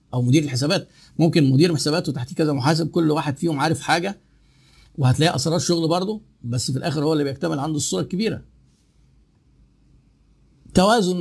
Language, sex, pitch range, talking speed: Arabic, male, 145-185 Hz, 150 wpm